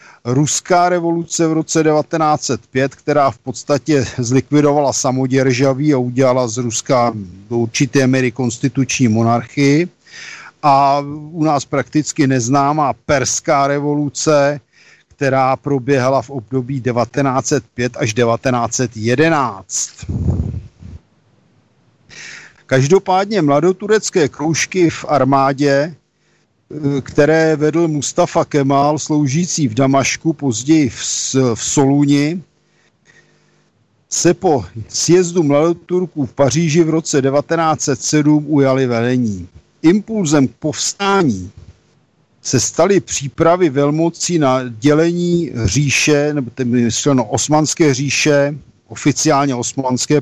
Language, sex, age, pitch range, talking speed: Slovak, male, 50-69, 125-155 Hz, 90 wpm